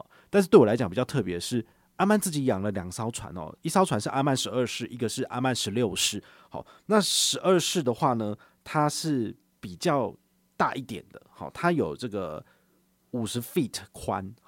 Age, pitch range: 30-49, 105-145 Hz